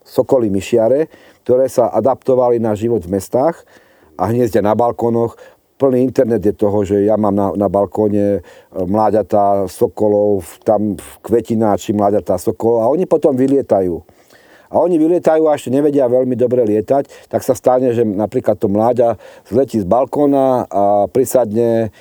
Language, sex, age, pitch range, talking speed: Slovak, male, 50-69, 105-130 Hz, 150 wpm